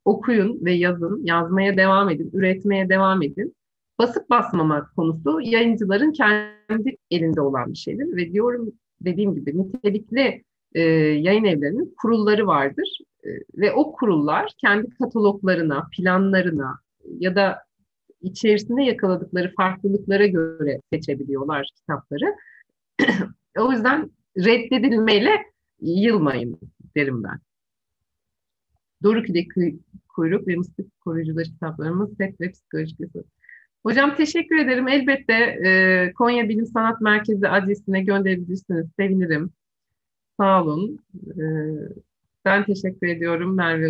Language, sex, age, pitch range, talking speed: Turkish, female, 50-69, 170-225 Hz, 105 wpm